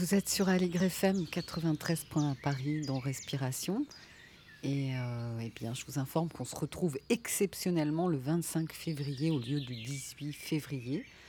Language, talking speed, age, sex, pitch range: French, 150 wpm, 40-59, female, 140-180 Hz